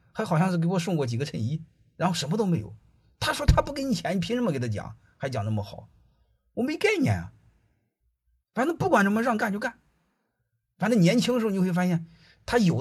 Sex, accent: male, native